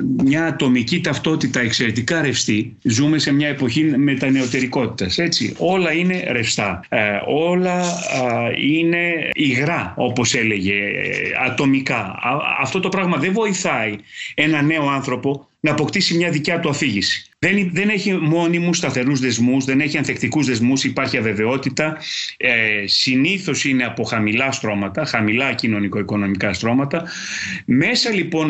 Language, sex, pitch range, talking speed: Greek, male, 125-175 Hz, 125 wpm